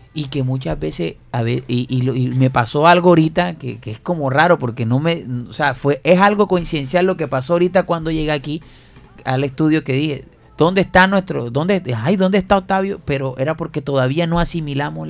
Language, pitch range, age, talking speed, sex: Spanish, 130-170 Hz, 30-49, 205 wpm, male